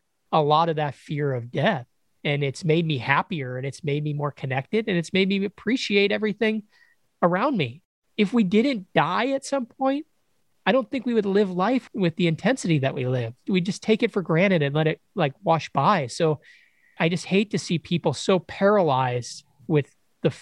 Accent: American